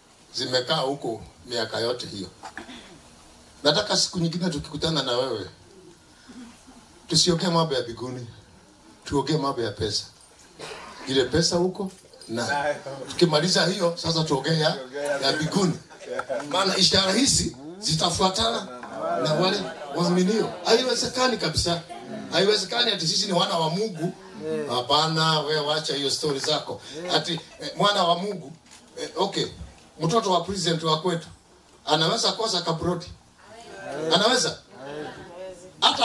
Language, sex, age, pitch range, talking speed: English, male, 50-69, 155-215 Hz, 120 wpm